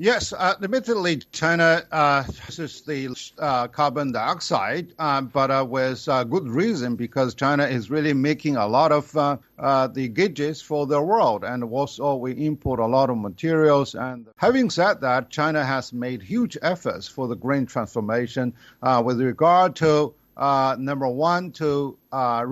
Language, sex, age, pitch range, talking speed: English, male, 50-69, 130-160 Hz, 165 wpm